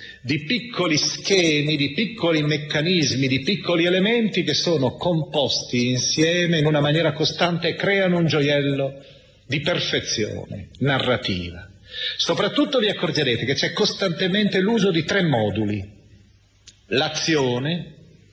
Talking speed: 115 wpm